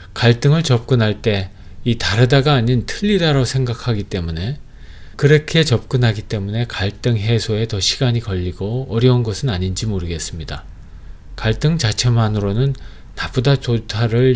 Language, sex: Korean, male